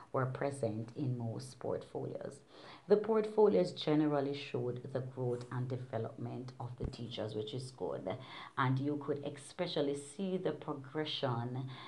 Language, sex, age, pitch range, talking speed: English, female, 40-59, 125-155 Hz, 130 wpm